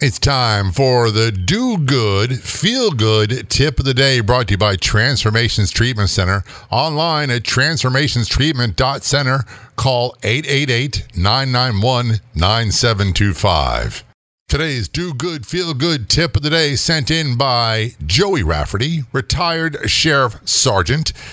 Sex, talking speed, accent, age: male, 105 wpm, American, 50-69